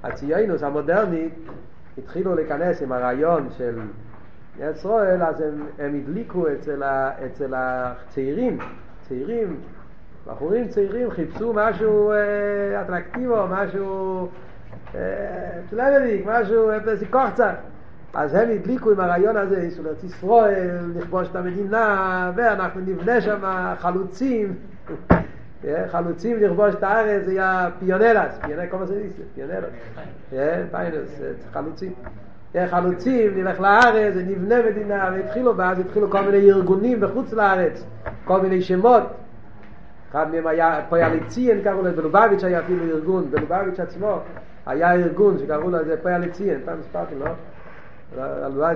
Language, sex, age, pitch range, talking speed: Hebrew, male, 50-69, 160-210 Hz, 105 wpm